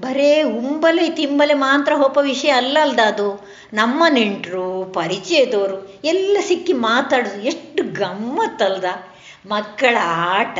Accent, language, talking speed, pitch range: native, Kannada, 100 wpm, 210-300 Hz